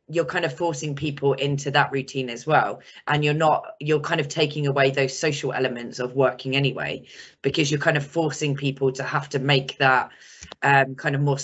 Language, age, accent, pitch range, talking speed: English, 10-29, British, 135-150 Hz, 205 wpm